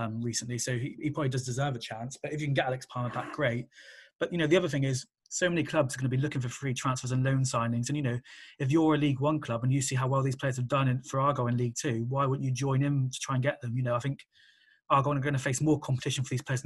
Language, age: English, 20-39